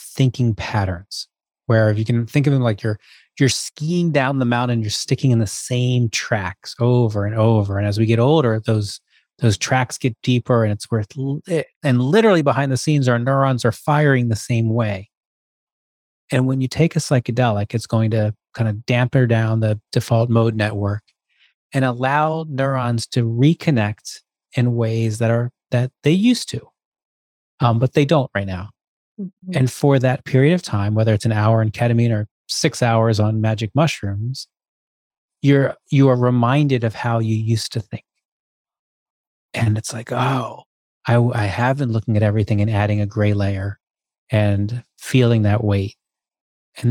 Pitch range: 110-135 Hz